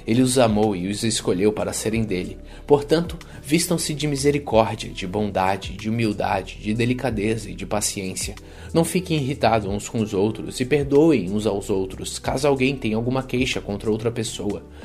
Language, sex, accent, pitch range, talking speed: Portuguese, male, Brazilian, 105-130 Hz, 170 wpm